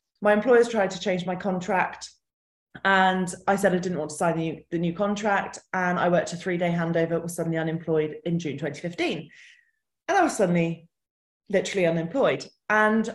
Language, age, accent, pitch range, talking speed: English, 20-39, British, 175-225 Hz, 175 wpm